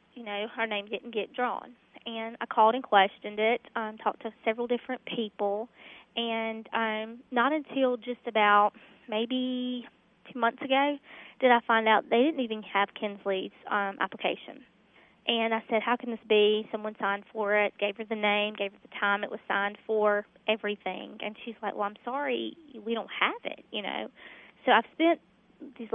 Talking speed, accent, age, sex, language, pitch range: 185 wpm, American, 20-39, female, English, 205-235 Hz